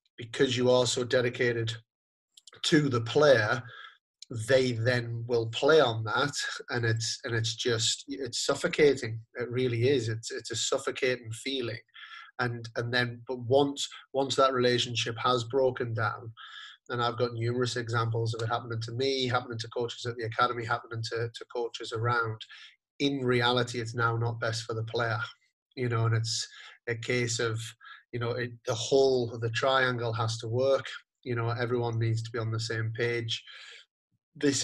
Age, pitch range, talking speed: 30-49, 115-125 Hz, 170 wpm